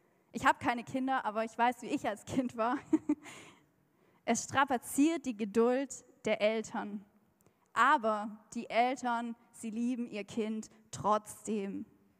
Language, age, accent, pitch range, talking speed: German, 10-29, German, 220-275 Hz, 130 wpm